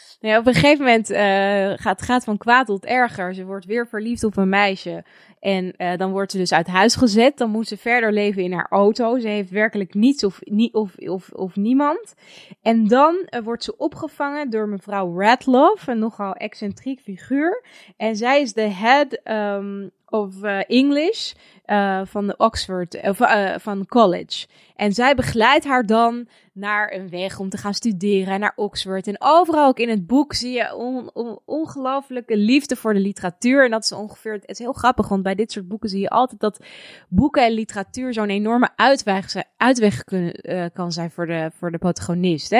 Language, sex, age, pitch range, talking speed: Dutch, female, 20-39, 195-240 Hz, 180 wpm